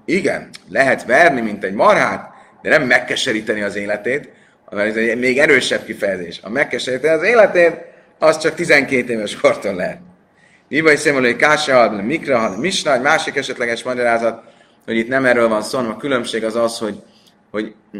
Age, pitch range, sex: 30-49, 115-150 Hz, male